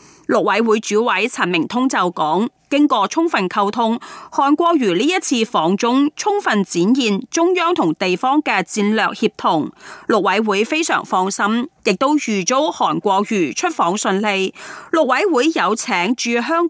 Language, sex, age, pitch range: Chinese, female, 30-49, 195-275 Hz